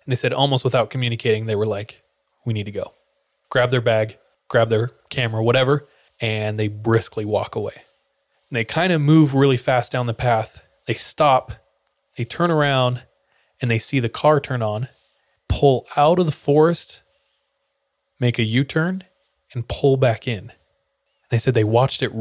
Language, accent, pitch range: English, American, 110-135 Hz